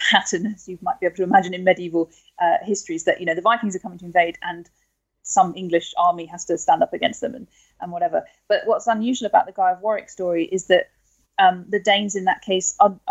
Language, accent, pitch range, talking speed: English, British, 175-210 Hz, 240 wpm